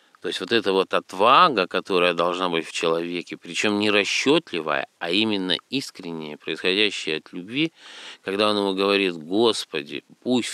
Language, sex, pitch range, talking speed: Russian, male, 90-110 Hz, 150 wpm